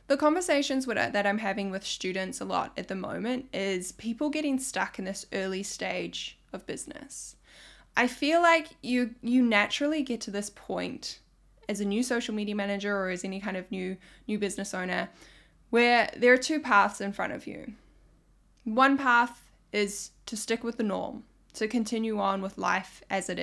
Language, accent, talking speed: English, Australian, 180 wpm